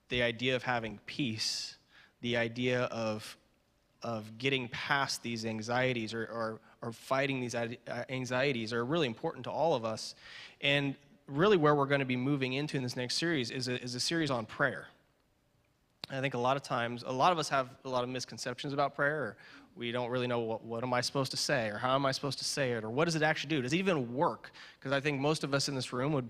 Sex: male